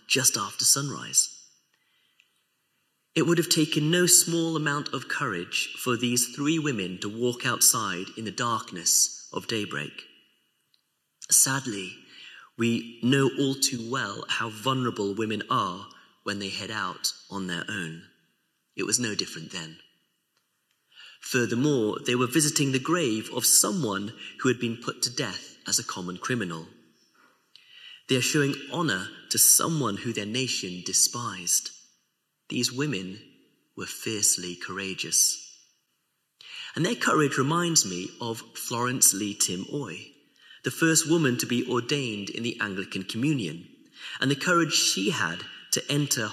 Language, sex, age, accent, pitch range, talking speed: English, male, 30-49, British, 100-140 Hz, 135 wpm